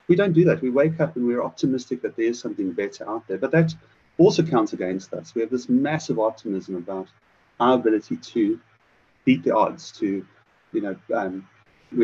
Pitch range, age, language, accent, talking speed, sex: 100-155 Hz, 30-49, English, British, 195 wpm, male